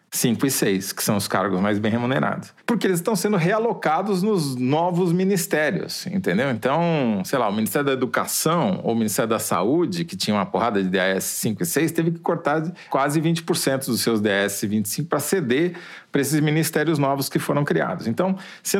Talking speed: 190 wpm